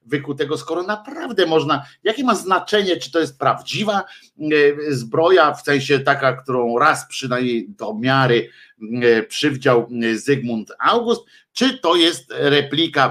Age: 50-69